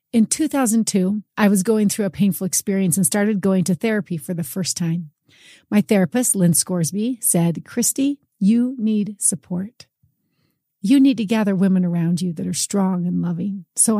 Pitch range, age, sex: 185-220 Hz, 40-59, female